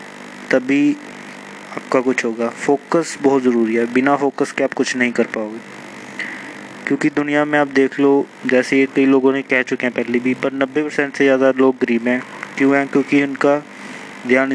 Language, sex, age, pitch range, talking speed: Hindi, male, 20-39, 125-140 Hz, 175 wpm